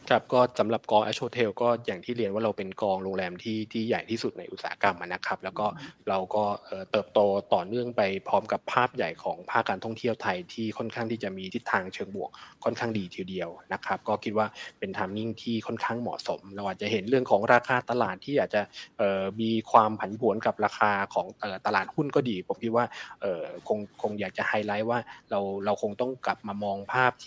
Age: 20-39